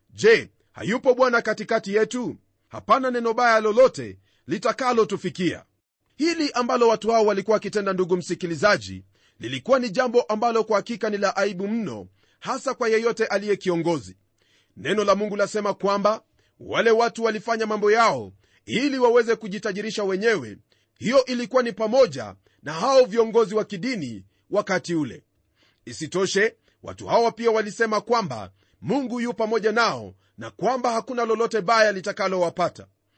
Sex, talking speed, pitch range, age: male, 135 wpm, 180-240 Hz, 40-59